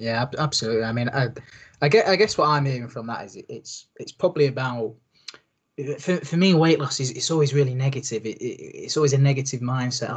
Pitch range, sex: 120-145 Hz, male